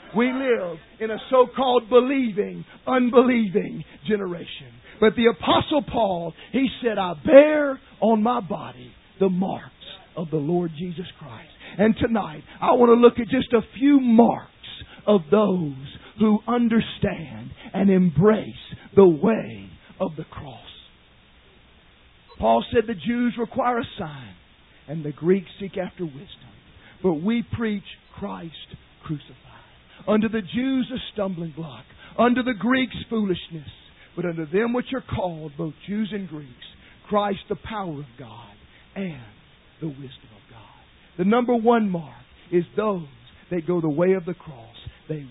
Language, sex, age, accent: English, male, 50-69, American